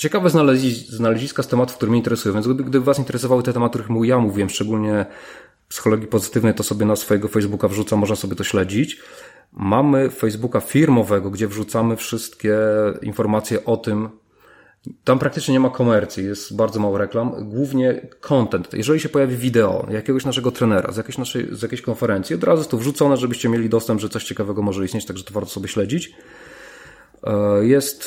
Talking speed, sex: 175 wpm, male